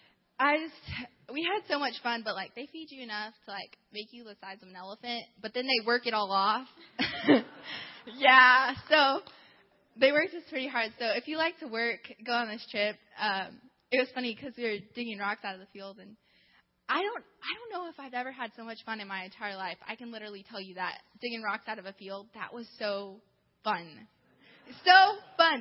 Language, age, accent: English, 10-29, American